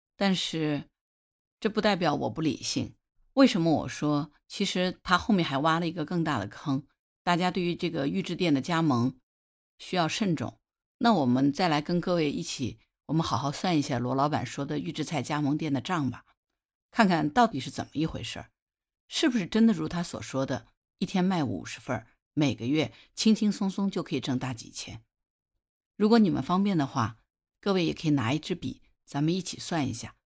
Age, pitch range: 50-69, 145-200 Hz